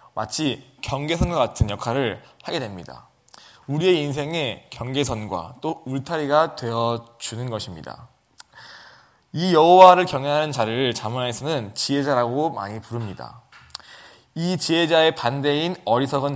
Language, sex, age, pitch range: Korean, male, 20-39, 120-160 Hz